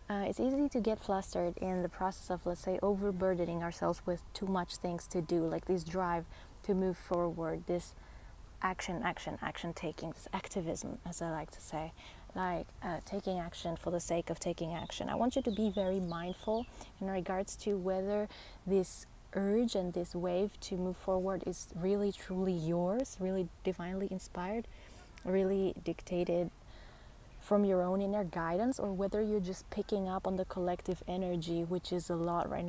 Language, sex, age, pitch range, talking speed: English, female, 20-39, 175-200 Hz, 175 wpm